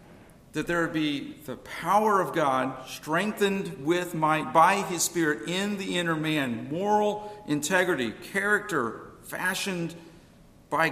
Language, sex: English, male